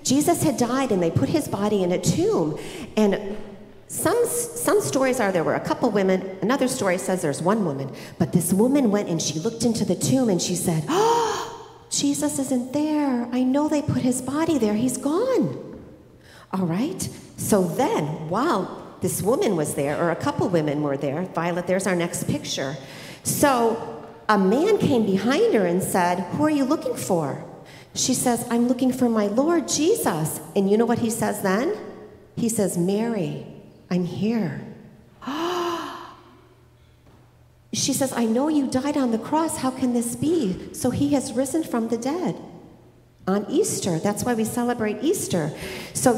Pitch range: 180-275 Hz